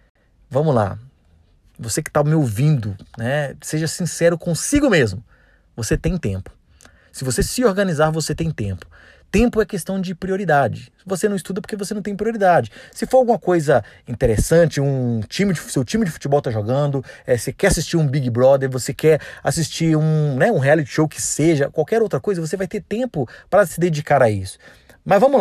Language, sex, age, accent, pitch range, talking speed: Portuguese, male, 30-49, Brazilian, 130-190 Hz, 190 wpm